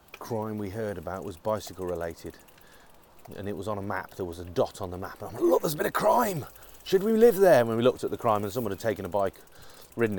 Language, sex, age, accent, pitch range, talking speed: English, male, 30-49, British, 95-120 Hz, 275 wpm